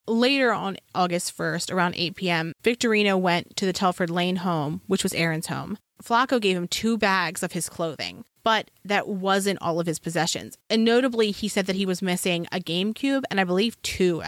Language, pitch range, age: English, 175-210 Hz, 20-39